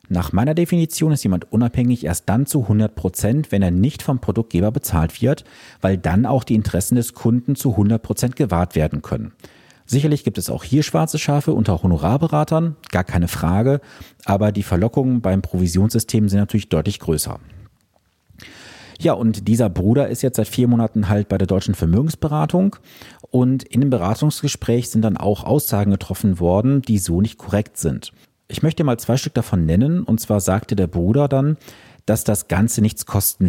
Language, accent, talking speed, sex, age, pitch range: German, German, 175 wpm, male, 40-59, 95-135 Hz